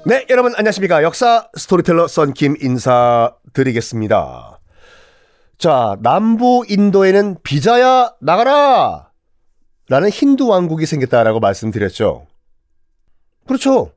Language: Korean